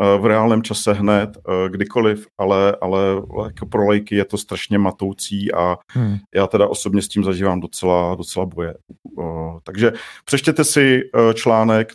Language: Czech